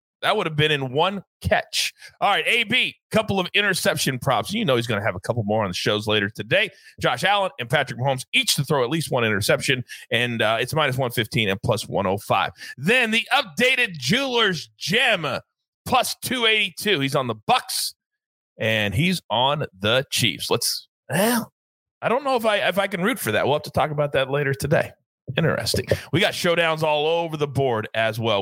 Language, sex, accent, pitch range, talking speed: English, male, American, 125-200 Hz, 200 wpm